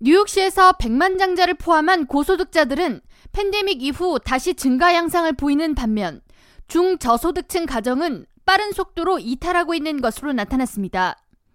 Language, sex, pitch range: Korean, female, 270-370 Hz